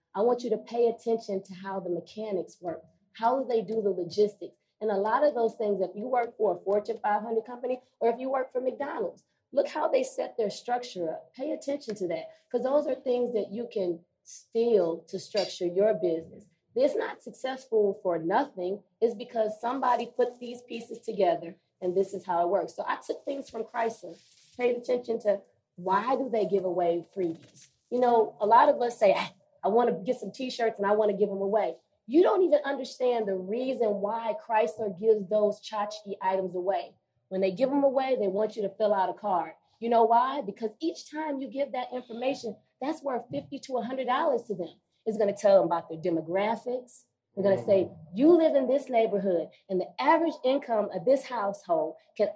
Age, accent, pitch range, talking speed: 30-49, American, 195-255 Hz, 205 wpm